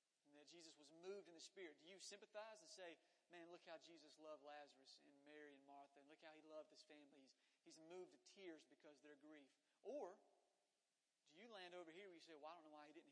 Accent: American